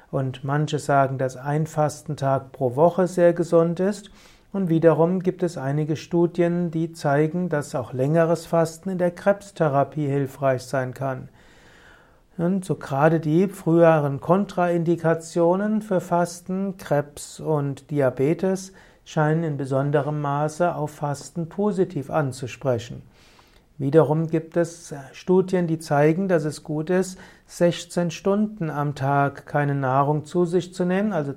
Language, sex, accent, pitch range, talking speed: German, male, German, 140-175 Hz, 130 wpm